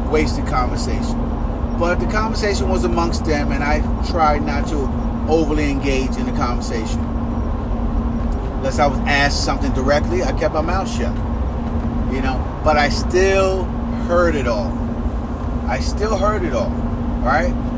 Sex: male